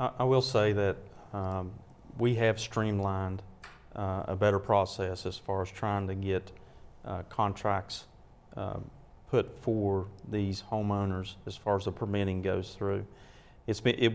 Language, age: English, 40-59